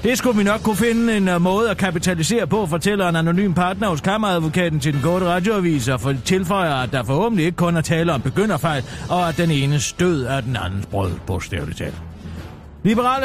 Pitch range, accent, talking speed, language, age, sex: 140-210 Hz, German, 200 wpm, Danish, 40-59, male